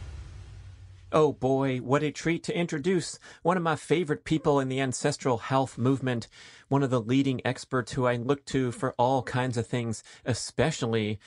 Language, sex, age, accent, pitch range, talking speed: English, male, 30-49, American, 115-140 Hz, 170 wpm